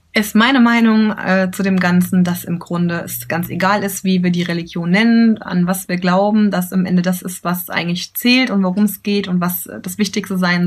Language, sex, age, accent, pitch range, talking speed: German, female, 20-39, German, 180-220 Hz, 230 wpm